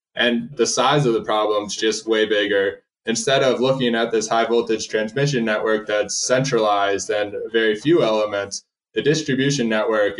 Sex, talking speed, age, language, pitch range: male, 165 wpm, 20-39, English, 110-125 Hz